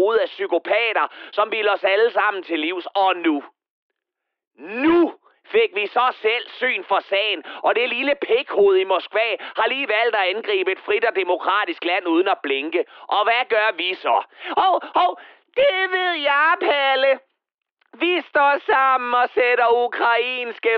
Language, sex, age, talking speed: Danish, male, 30-49, 165 wpm